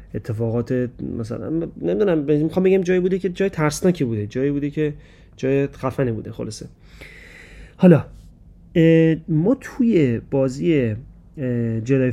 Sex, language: male, Persian